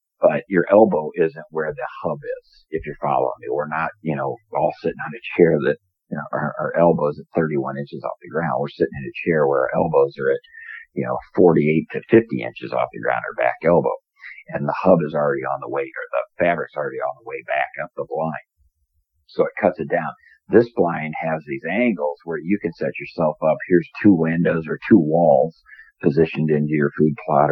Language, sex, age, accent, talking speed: English, male, 50-69, American, 220 wpm